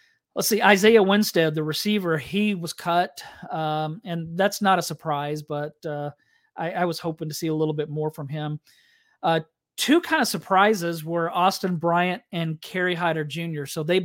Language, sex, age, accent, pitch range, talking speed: English, male, 40-59, American, 150-190 Hz, 185 wpm